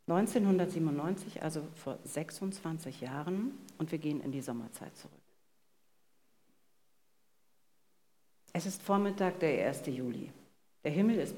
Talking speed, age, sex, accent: 110 wpm, 60-79, female, German